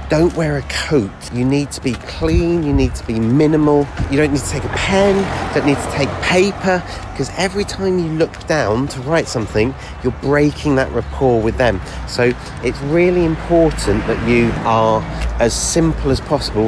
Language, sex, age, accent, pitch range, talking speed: English, male, 40-59, British, 110-150 Hz, 185 wpm